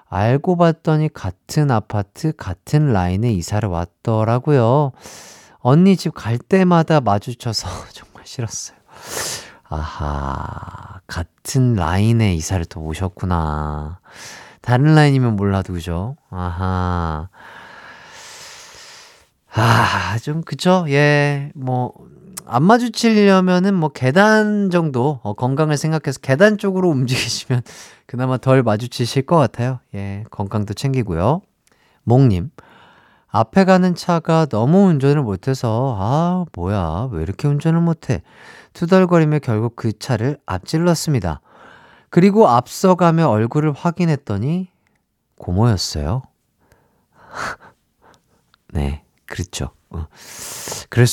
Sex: male